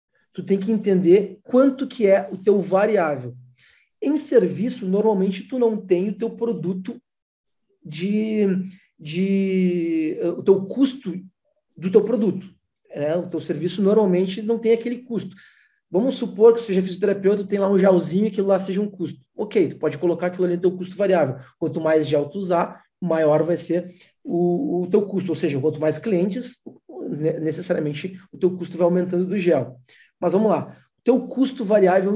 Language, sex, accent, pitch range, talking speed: Portuguese, male, Brazilian, 175-220 Hz, 175 wpm